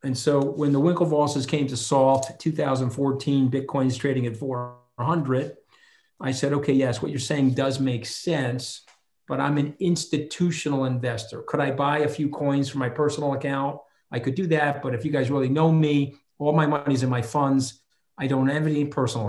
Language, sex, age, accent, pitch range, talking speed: English, male, 40-59, American, 125-150 Hz, 190 wpm